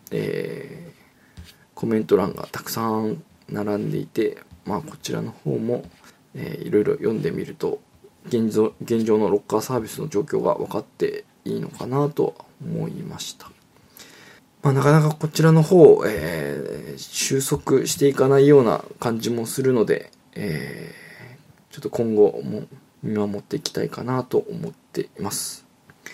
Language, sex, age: Japanese, male, 20-39